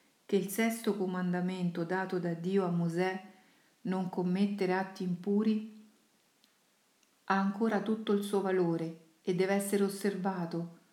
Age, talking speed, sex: 50-69, 125 wpm, female